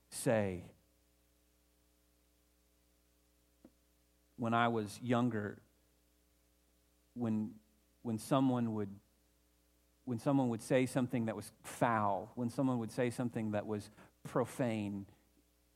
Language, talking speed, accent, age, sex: English, 95 wpm, American, 40-59, male